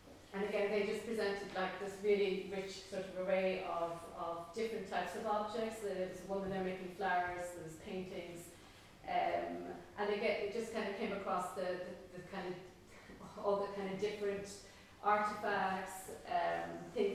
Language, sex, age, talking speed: English, female, 30-49, 165 wpm